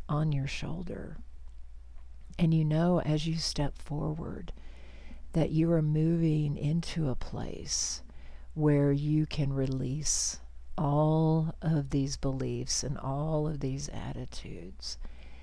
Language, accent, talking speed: English, American, 115 wpm